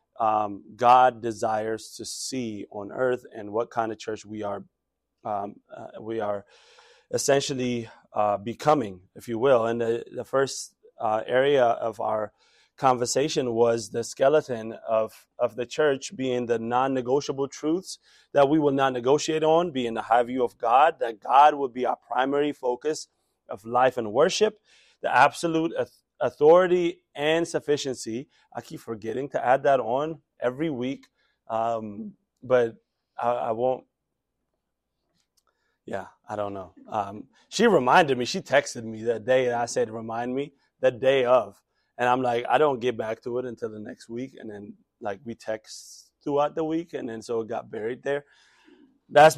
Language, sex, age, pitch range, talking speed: English, male, 30-49, 115-145 Hz, 170 wpm